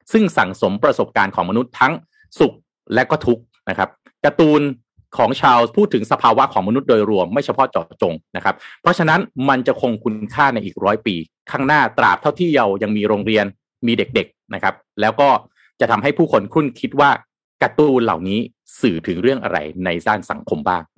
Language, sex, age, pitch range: Thai, male, 30-49, 110-160 Hz